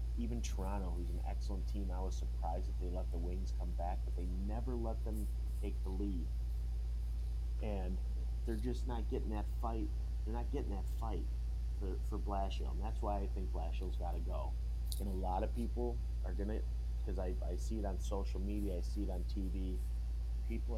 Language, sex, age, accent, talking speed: English, male, 30-49, American, 200 wpm